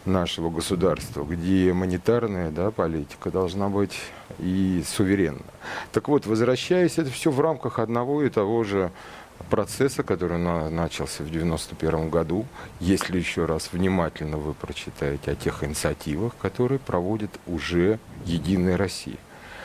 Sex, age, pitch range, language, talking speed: male, 40-59, 95-135 Hz, Russian, 120 wpm